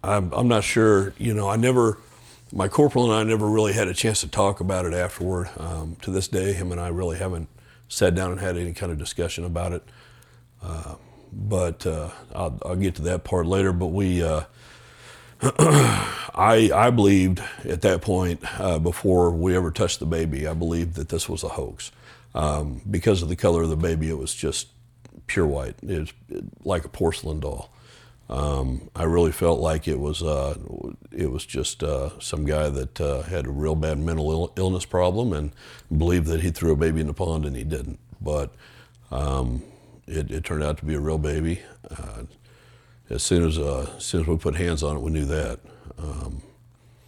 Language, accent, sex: English, American, male